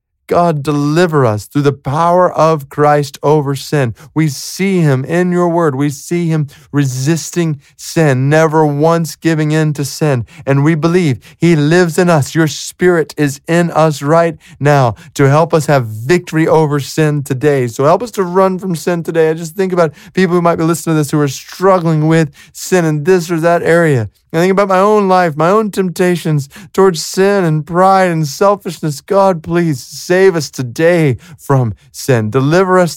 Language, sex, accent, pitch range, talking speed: English, male, American, 135-170 Hz, 185 wpm